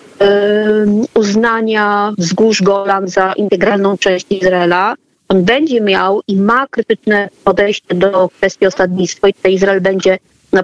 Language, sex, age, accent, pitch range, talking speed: Polish, female, 30-49, native, 195-230 Hz, 130 wpm